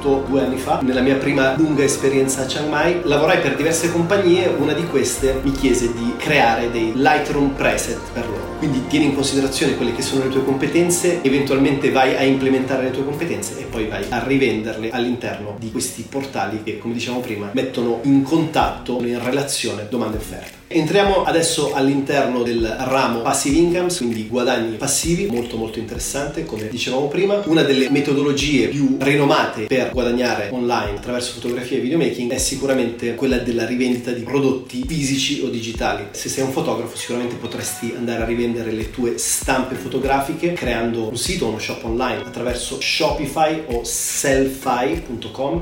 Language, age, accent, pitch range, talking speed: Italian, 30-49, native, 120-140 Hz, 165 wpm